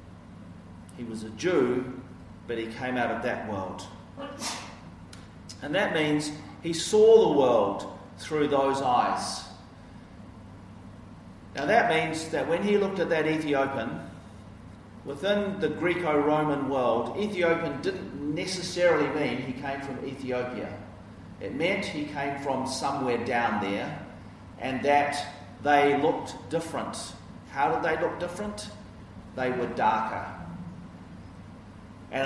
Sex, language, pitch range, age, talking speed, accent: male, English, 105-150 Hz, 40-59, 120 wpm, Australian